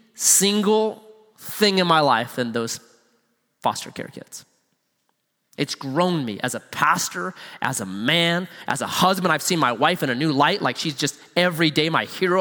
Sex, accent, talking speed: male, American, 180 wpm